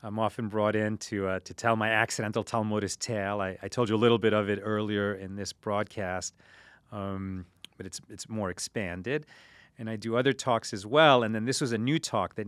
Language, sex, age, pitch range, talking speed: English, male, 30-49, 100-125 Hz, 220 wpm